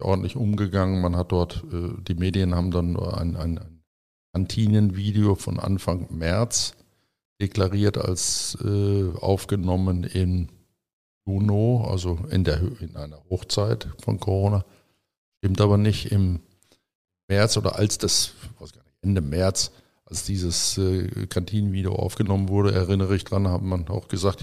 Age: 50-69